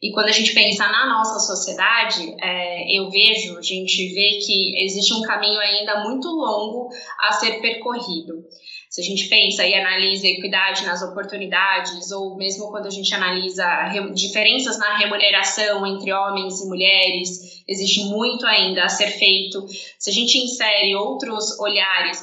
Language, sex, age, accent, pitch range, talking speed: Portuguese, female, 10-29, Brazilian, 195-225 Hz, 155 wpm